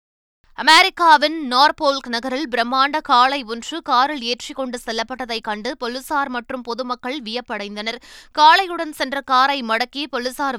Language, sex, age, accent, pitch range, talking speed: Tamil, female, 20-39, native, 235-280 Hz, 110 wpm